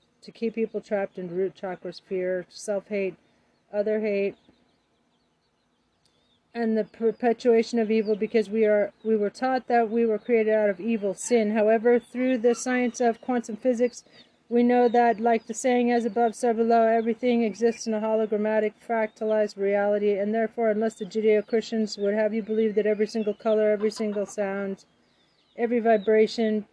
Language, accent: English, American